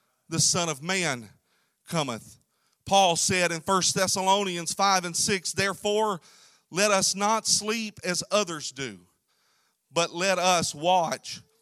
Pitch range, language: 160-200 Hz, English